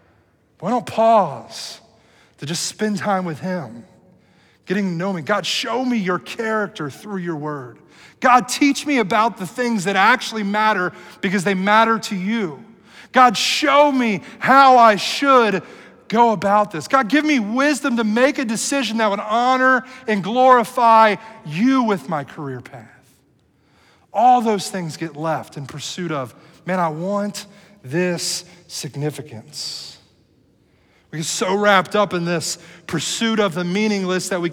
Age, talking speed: 30-49, 155 wpm